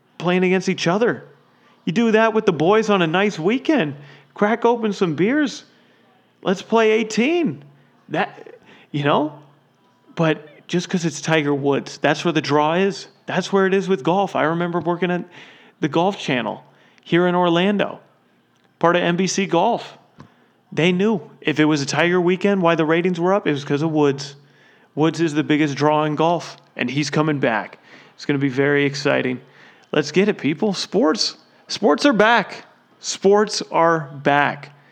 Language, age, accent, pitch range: English, 30-49, American, 145-185 Hz